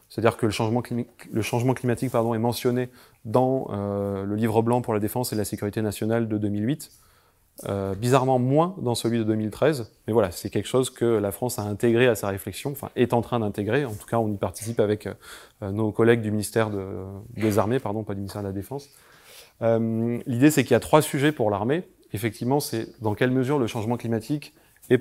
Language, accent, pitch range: French, French, 105-125 Hz